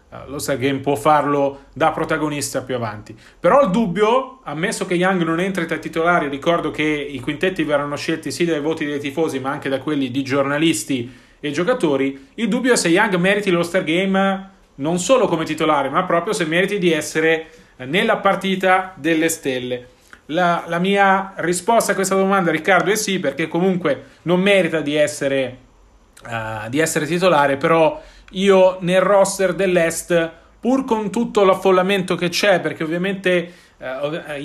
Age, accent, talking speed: 40-59, native, 170 wpm